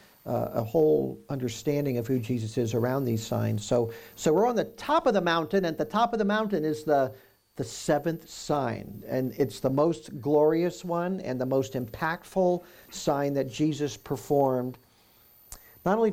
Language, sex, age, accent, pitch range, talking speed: English, male, 50-69, American, 115-155 Hz, 180 wpm